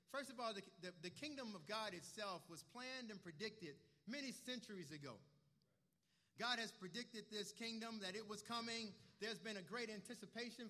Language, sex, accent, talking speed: English, male, American, 175 wpm